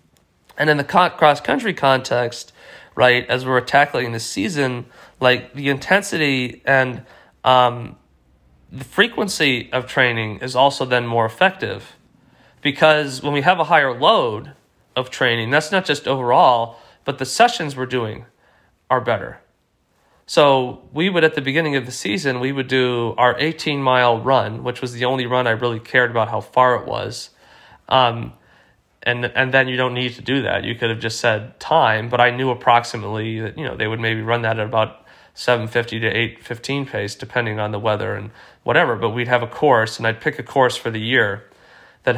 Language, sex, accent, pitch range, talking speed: English, male, American, 115-135 Hz, 185 wpm